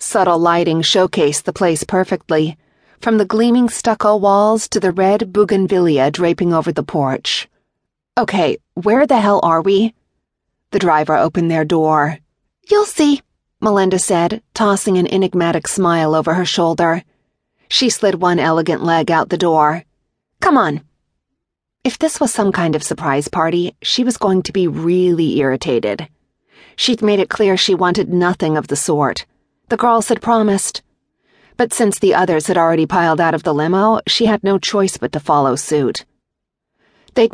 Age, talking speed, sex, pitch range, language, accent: 30-49, 160 wpm, female, 160-210 Hz, English, American